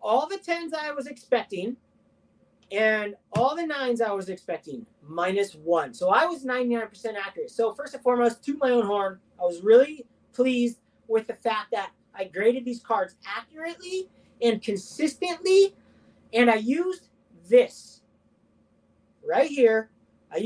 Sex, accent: male, American